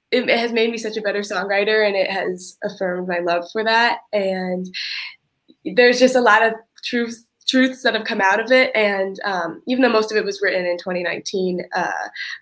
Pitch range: 185-230 Hz